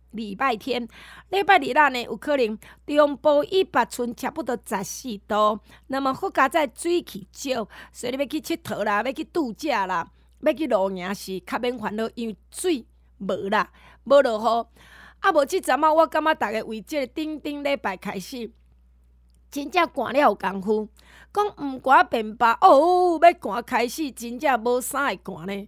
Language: Chinese